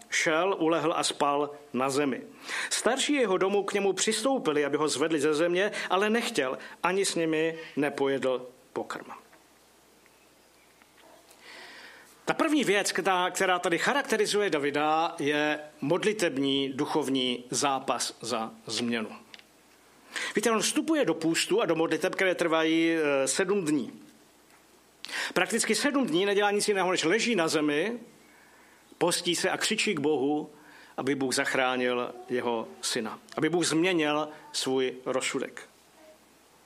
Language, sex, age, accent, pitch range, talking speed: Czech, male, 50-69, native, 145-190 Hz, 125 wpm